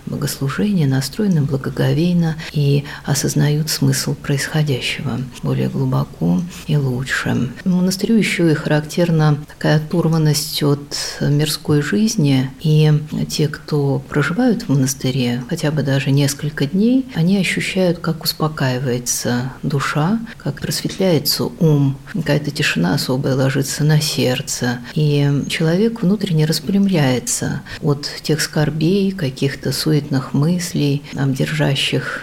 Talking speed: 105 wpm